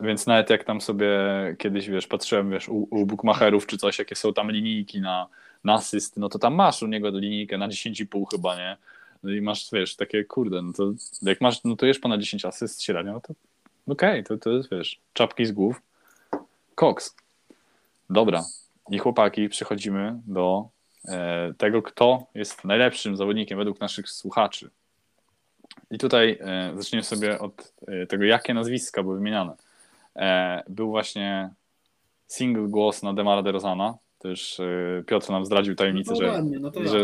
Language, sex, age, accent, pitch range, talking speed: Polish, male, 20-39, native, 100-110 Hz, 155 wpm